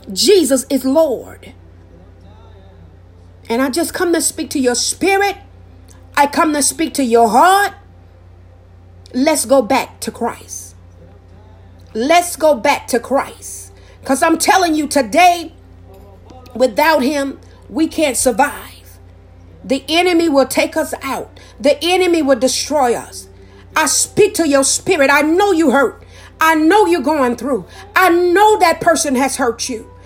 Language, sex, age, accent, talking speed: English, female, 50-69, American, 140 wpm